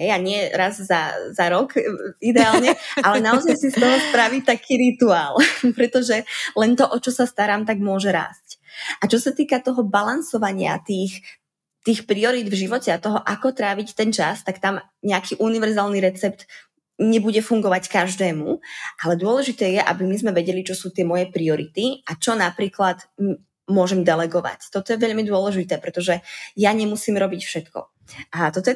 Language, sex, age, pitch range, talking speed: Czech, female, 20-39, 185-230 Hz, 165 wpm